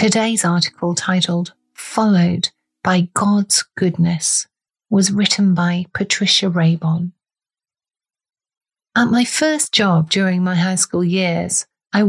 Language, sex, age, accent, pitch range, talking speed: English, female, 40-59, British, 170-210 Hz, 110 wpm